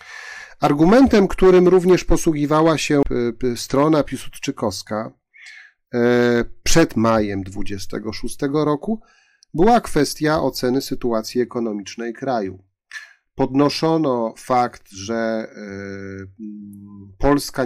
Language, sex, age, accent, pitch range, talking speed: Polish, male, 40-59, native, 105-145 Hz, 70 wpm